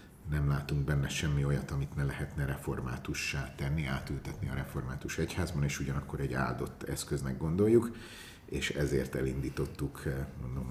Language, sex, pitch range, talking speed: Hungarian, male, 70-90 Hz, 135 wpm